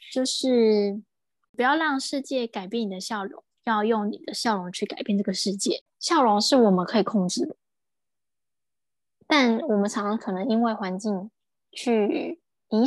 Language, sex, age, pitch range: Chinese, female, 20-39, 210-270 Hz